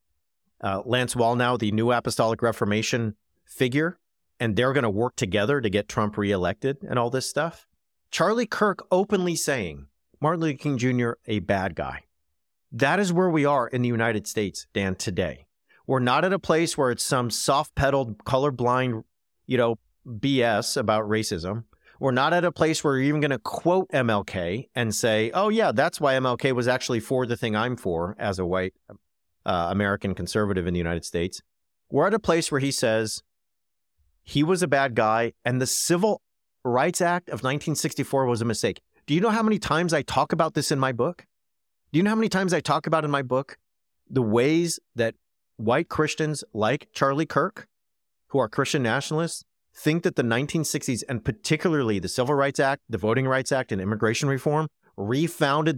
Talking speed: 185 wpm